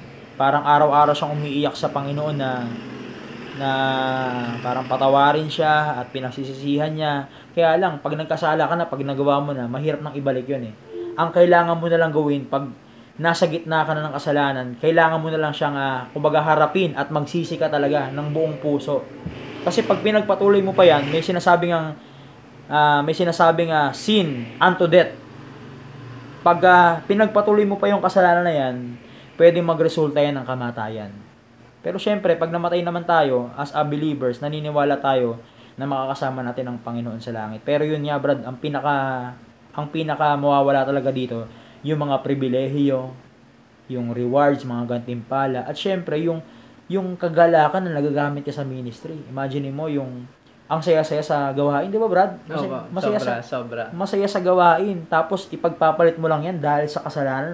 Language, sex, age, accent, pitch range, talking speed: Filipino, male, 20-39, native, 130-165 Hz, 165 wpm